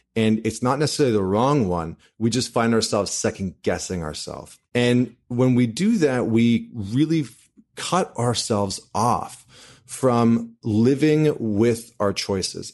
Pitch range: 105-125 Hz